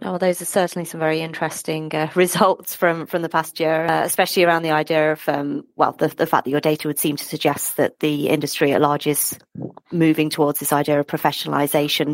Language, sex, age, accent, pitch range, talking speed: English, female, 30-49, British, 145-175 Hz, 220 wpm